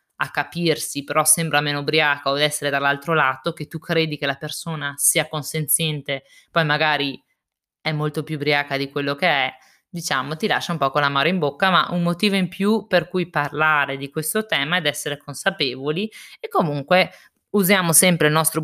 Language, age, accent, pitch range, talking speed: Italian, 20-39, native, 140-175 Hz, 190 wpm